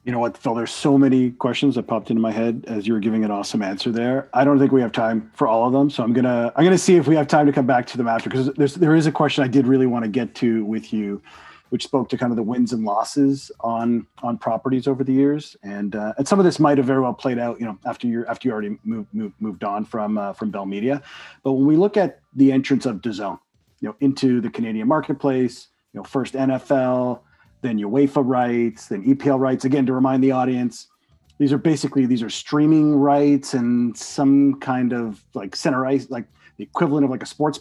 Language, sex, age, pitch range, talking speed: English, male, 40-59, 115-140 Hz, 250 wpm